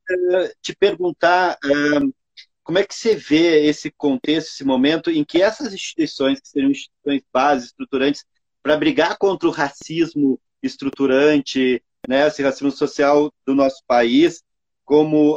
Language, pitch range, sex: Portuguese, 135-200 Hz, male